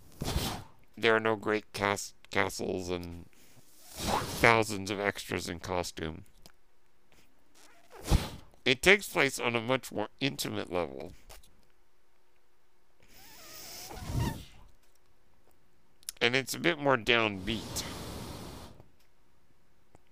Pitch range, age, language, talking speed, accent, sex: 95-120 Hz, 60-79, English, 80 wpm, American, male